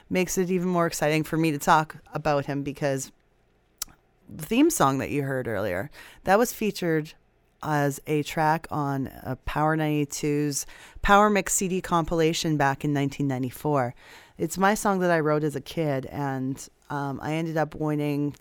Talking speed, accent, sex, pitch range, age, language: 165 wpm, American, female, 135-170 Hz, 30-49, English